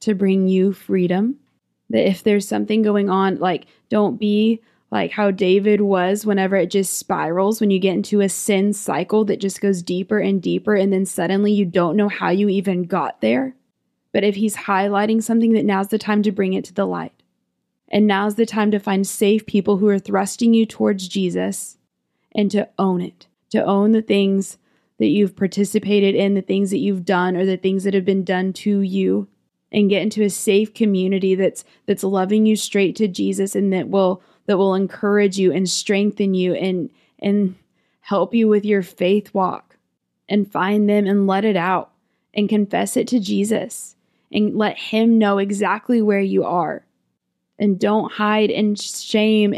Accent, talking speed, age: American, 190 wpm, 20-39